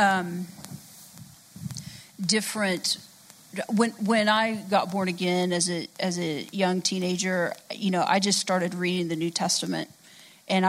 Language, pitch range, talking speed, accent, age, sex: English, 185-215 Hz, 135 wpm, American, 40-59, female